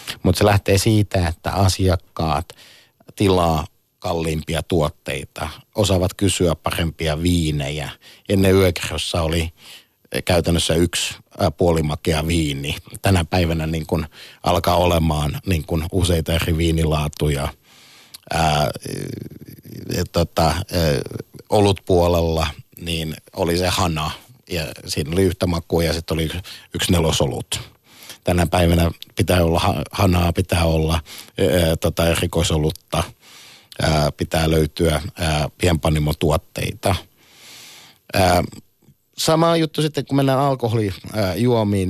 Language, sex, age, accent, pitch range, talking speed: Finnish, male, 50-69, native, 80-95 Hz, 95 wpm